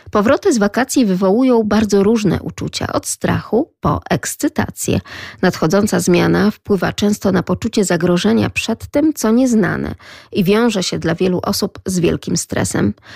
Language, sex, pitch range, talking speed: Polish, female, 175-225 Hz, 140 wpm